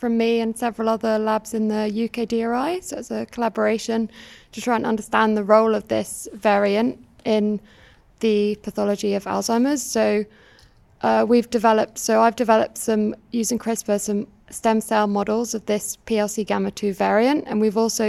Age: 20-39